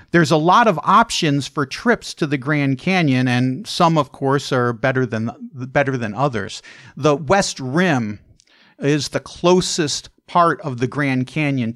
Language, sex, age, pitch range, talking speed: English, male, 50-69, 130-170 Hz, 165 wpm